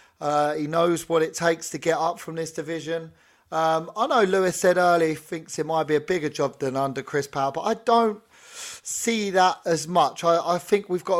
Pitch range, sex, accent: 150-170 Hz, male, British